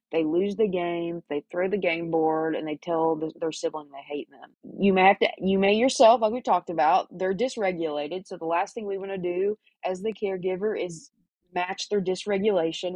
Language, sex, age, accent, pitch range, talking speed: English, female, 20-39, American, 165-200 Hz, 210 wpm